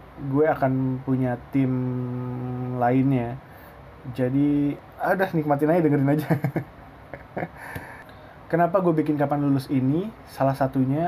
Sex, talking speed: male, 105 wpm